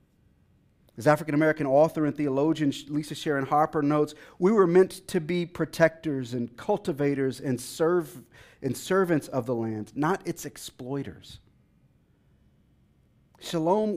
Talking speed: 115 wpm